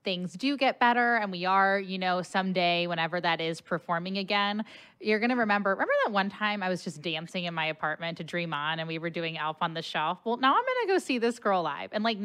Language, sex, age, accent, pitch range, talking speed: English, female, 10-29, American, 170-220 Hz, 250 wpm